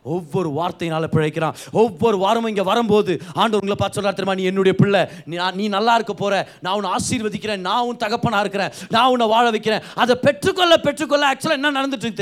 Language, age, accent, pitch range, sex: Tamil, 30-49, native, 185-255 Hz, male